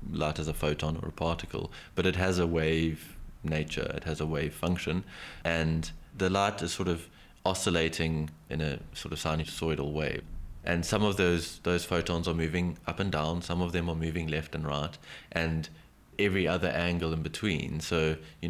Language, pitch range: English, 75-85 Hz